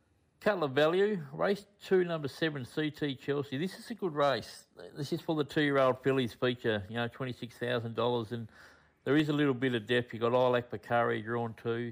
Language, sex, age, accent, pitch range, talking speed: English, male, 50-69, Australian, 110-130 Hz, 185 wpm